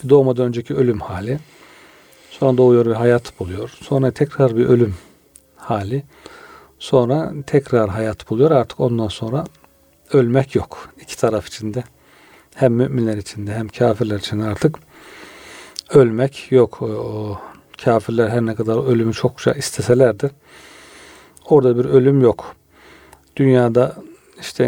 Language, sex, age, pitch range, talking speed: Turkish, male, 40-59, 115-140 Hz, 120 wpm